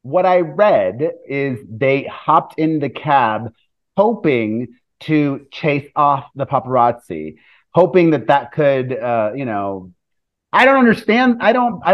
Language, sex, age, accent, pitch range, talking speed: English, male, 30-49, American, 135-190 Hz, 140 wpm